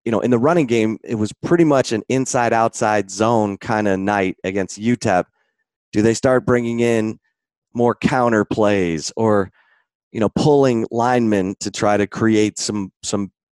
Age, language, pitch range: 30-49, English, 100-120 Hz